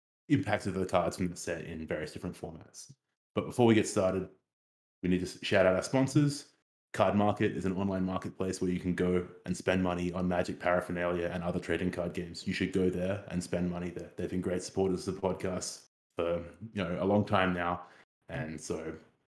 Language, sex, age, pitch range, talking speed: English, male, 20-39, 90-100 Hz, 210 wpm